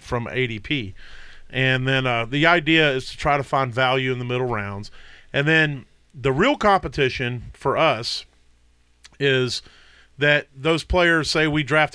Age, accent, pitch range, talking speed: 40-59, American, 115-145 Hz, 155 wpm